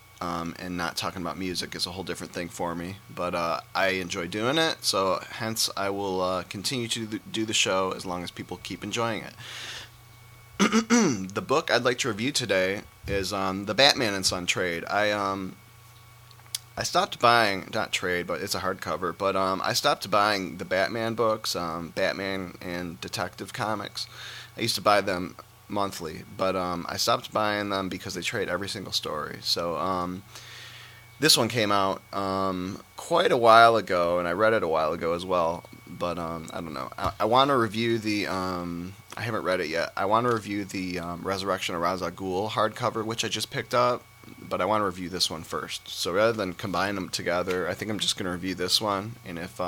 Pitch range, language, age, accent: 90-115 Hz, English, 30-49, American